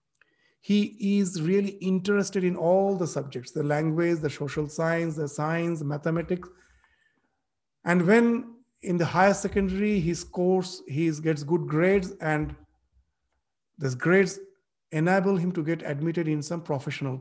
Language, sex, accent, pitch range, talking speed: English, male, Indian, 155-205 Hz, 135 wpm